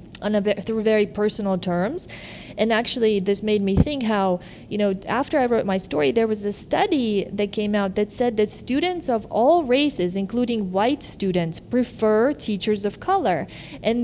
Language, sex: English, female